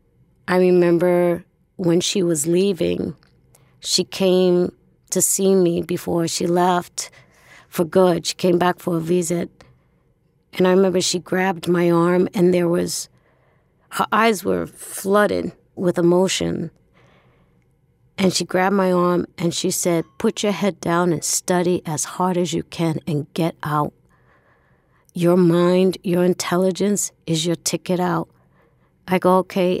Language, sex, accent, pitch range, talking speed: English, female, American, 160-180 Hz, 145 wpm